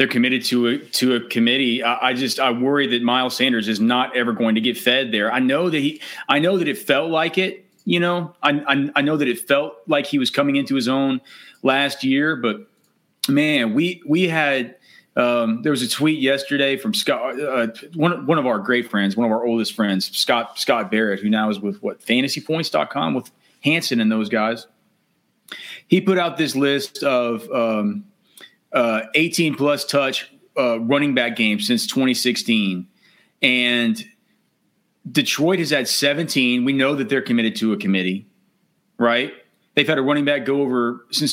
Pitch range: 115-145 Hz